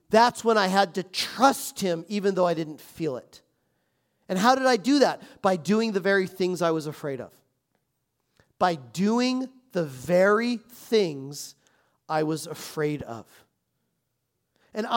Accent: American